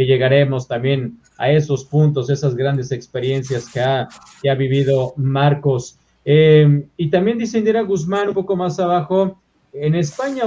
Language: Spanish